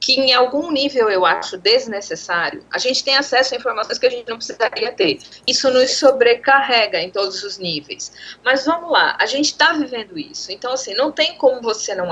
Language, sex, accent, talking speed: Portuguese, female, Brazilian, 205 wpm